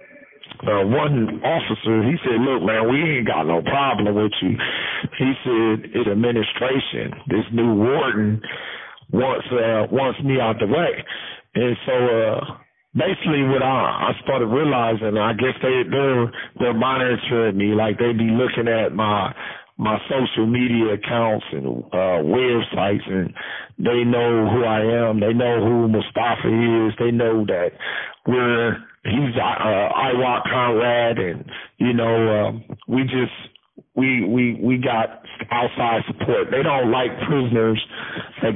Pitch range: 110-125 Hz